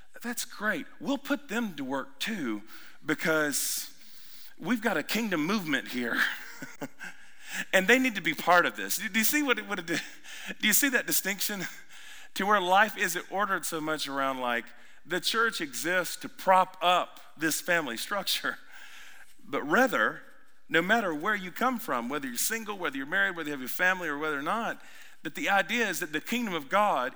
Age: 40-59